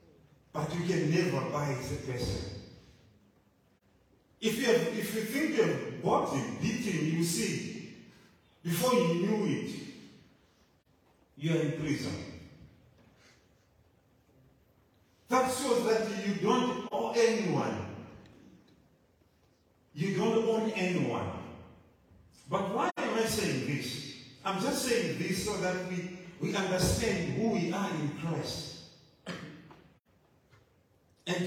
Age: 40-59